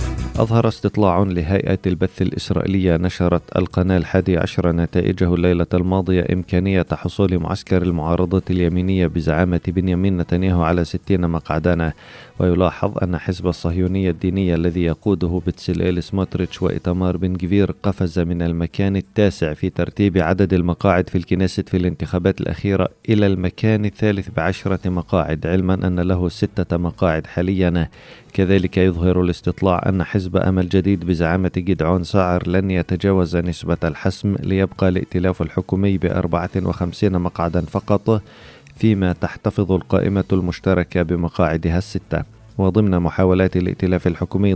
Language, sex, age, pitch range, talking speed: Arabic, male, 30-49, 90-95 Hz, 120 wpm